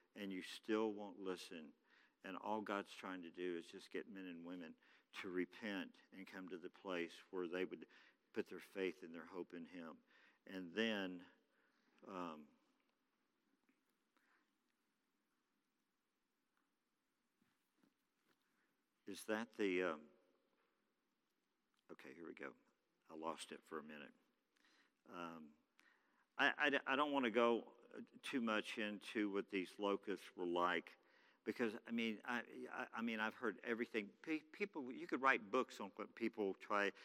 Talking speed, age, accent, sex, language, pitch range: 145 wpm, 50-69, American, male, English, 95-140 Hz